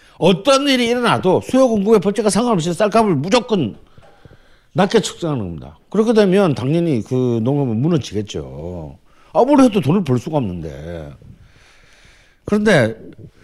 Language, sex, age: Korean, male, 50-69